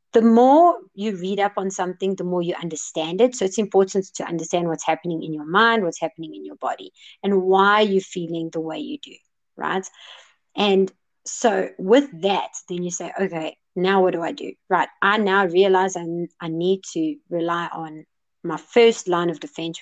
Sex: female